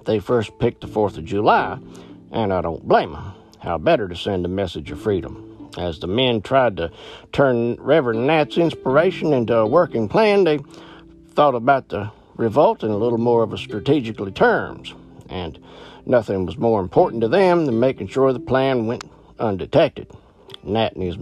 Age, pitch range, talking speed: 60-79, 105-130 Hz, 180 wpm